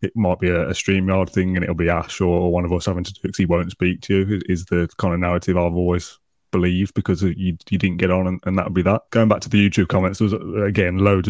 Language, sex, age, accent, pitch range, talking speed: English, male, 20-39, British, 90-105 Hz, 290 wpm